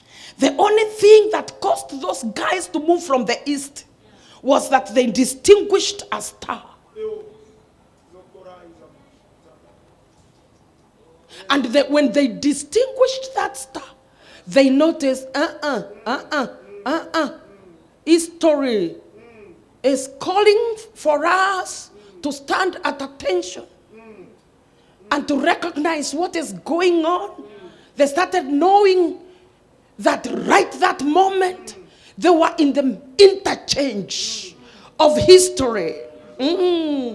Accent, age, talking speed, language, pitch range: Nigerian, 40-59, 105 wpm, English, 285-375 Hz